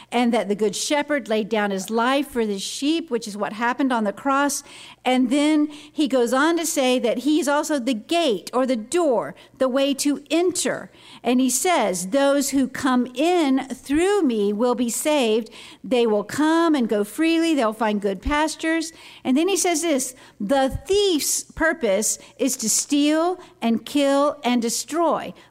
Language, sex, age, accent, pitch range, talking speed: English, female, 50-69, American, 235-310 Hz, 175 wpm